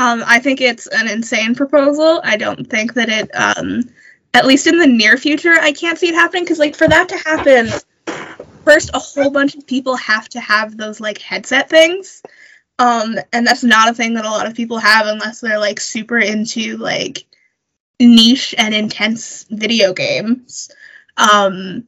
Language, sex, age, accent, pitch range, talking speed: English, female, 20-39, American, 215-285 Hz, 185 wpm